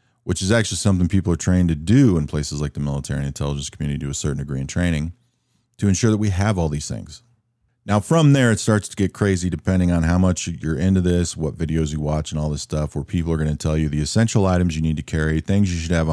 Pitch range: 80-115 Hz